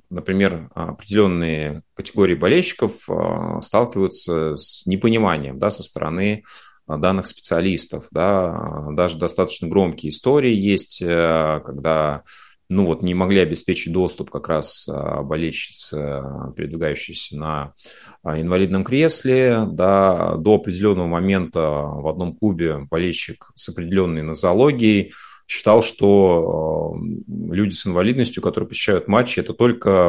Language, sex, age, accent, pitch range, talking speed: Russian, male, 30-49, native, 80-105 Hz, 105 wpm